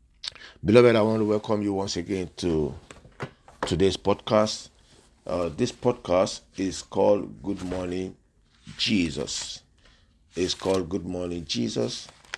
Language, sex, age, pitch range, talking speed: English, male, 50-69, 80-105 Hz, 115 wpm